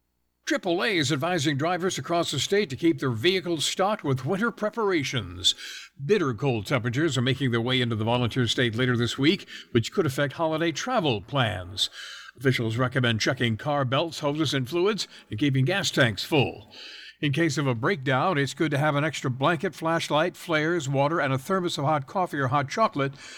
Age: 60-79